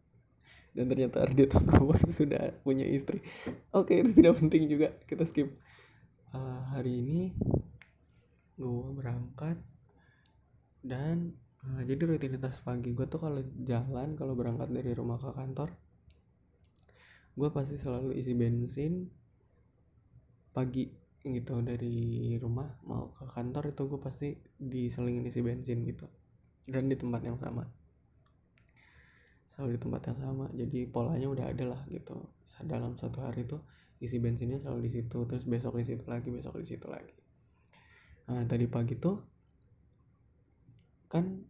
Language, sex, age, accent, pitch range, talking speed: Indonesian, male, 20-39, native, 120-140 Hz, 135 wpm